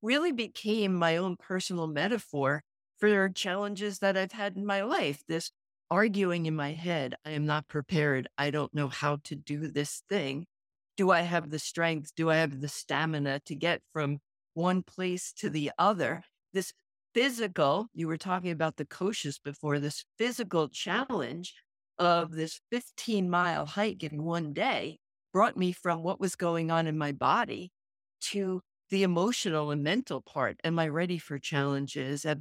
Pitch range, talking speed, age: 150-200 Hz, 165 wpm, 50-69